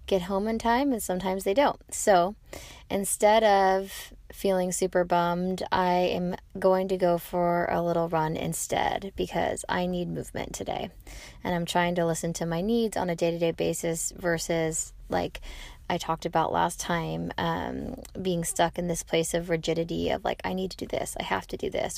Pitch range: 170-200 Hz